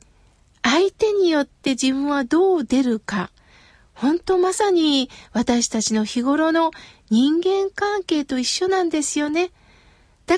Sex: female